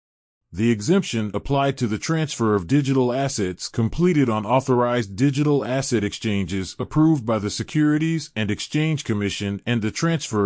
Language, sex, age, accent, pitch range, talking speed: English, male, 30-49, American, 105-145 Hz, 145 wpm